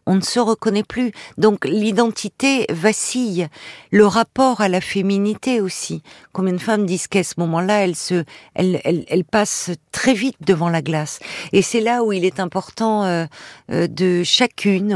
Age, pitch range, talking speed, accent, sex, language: 50-69, 175-215 Hz, 160 wpm, French, female, French